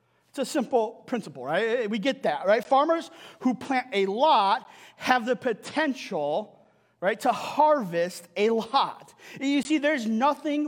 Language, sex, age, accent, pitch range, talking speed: English, male, 40-59, American, 205-270 Hz, 150 wpm